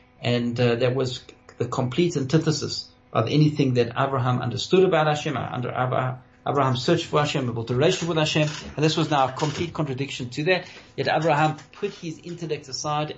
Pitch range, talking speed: 125-155 Hz, 180 wpm